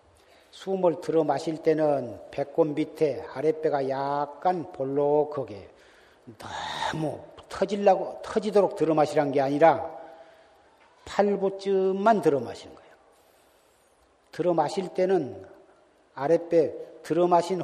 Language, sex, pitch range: Korean, male, 150-190 Hz